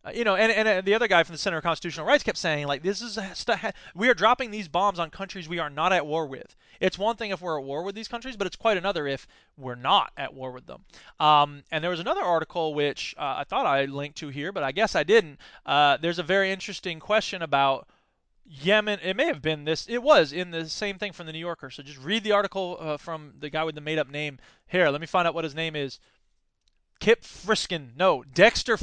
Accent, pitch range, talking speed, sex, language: American, 150-195 Hz, 255 wpm, male, English